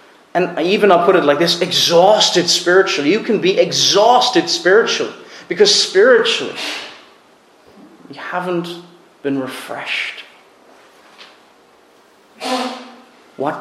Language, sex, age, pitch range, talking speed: English, male, 30-49, 155-245 Hz, 95 wpm